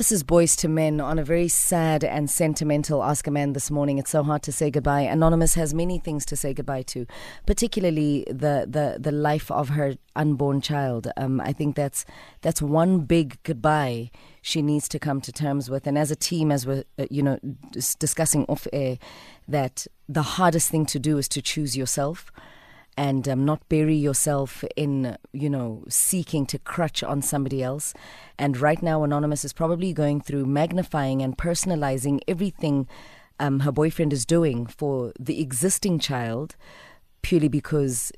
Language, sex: English, female